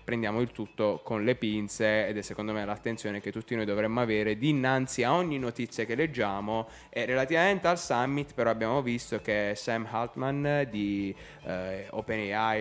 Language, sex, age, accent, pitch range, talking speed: Italian, male, 10-29, native, 105-145 Hz, 165 wpm